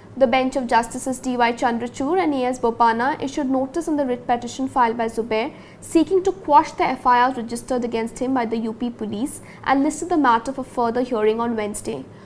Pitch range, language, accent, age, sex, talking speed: 240-280 Hz, English, Indian, 50-69, female, 190 wpm